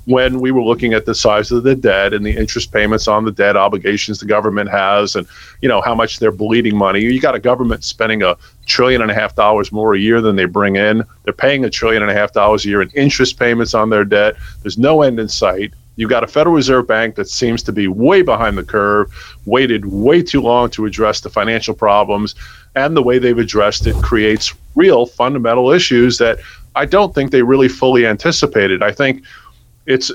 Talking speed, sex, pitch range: 225 wpm, male, 105-130 Hz